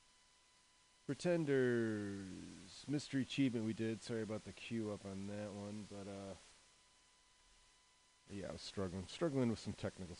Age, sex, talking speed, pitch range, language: 30-49, male, 135 wpm, 95-115 Hz, English